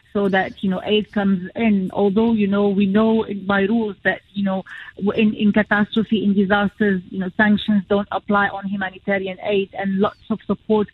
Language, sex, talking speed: English, female, 185 wpm